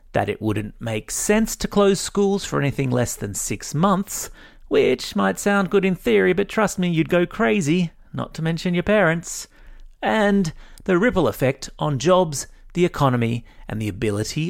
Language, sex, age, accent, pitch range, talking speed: English, male, 30-49, Australian, 110-175 Hz, 175 wpm